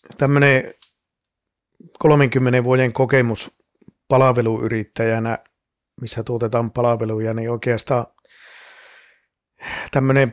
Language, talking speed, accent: Finnish, 65 wpm, native